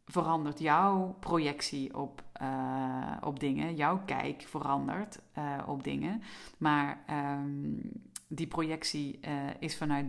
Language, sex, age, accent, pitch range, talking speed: Dutch, female, 40-59, Dutch, 140-160 Hz, 120 wpm